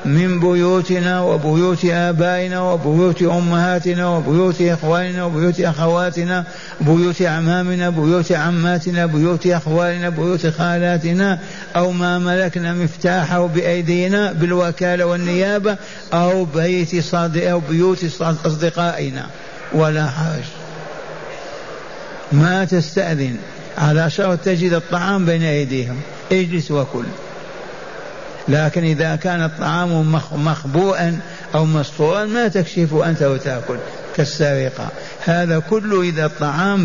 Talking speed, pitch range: 95 wpm, 165-185 Hz